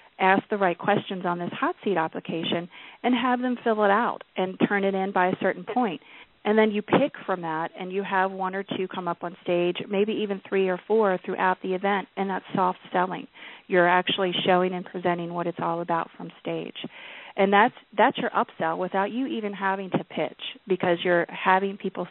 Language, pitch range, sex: English, 180-210 Hz, female